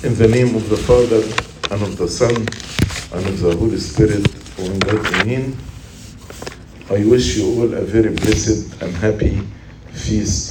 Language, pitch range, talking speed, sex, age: English, 105-125 Hz, 145 wpm, male, 50-69